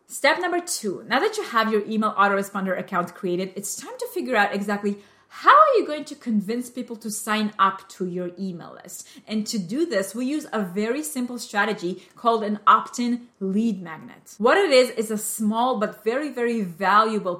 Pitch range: 195-240 Hz